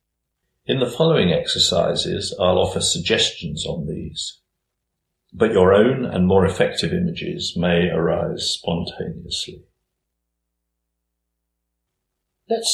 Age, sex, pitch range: 50-69, male, 85-100 Hz